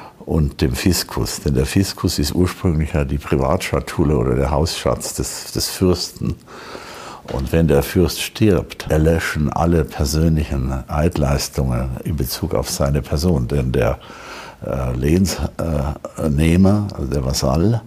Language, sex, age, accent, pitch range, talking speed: German, male, 60-79, German, 70-90 Hz, 135 wpm